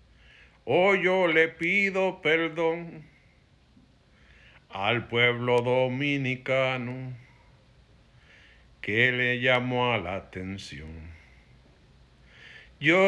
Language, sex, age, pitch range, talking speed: Spanish, male, 60-79, 105-140 Hz, 70 wpm